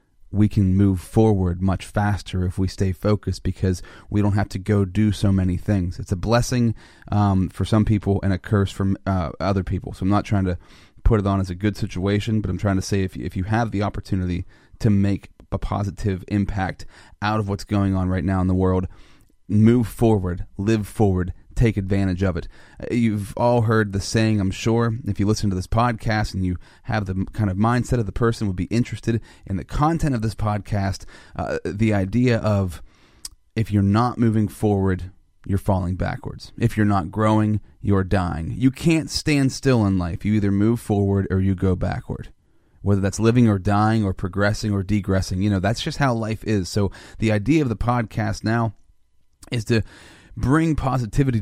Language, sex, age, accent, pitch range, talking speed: English, male, 30-49, American, 95-115 Hz, 200 wpm